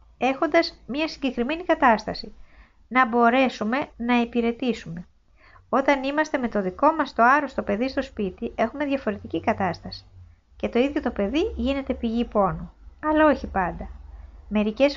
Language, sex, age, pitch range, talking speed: Greek, female, 20-39, 205-275 Hz, 135 wpm